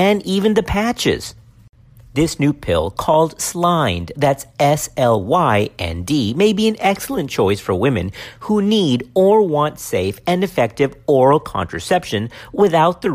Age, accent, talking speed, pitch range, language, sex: 50-69, American, 130 wpm, 120-190 Hz, English, male